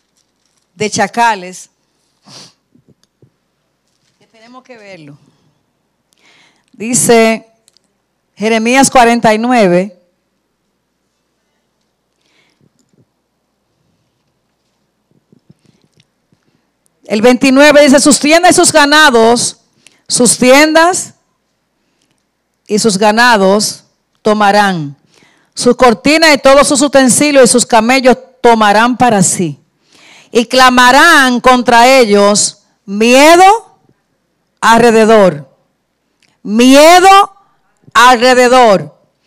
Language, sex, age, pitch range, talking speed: Spanish, female, 40-59, 205-275 Hz, 65 wpm